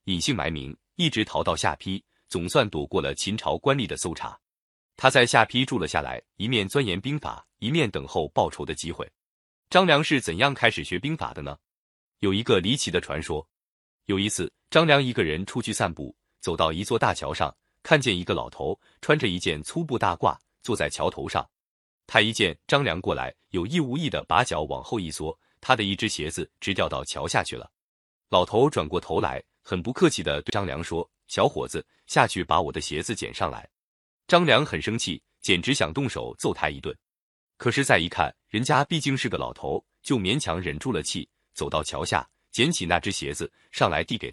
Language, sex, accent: Chinese, male, native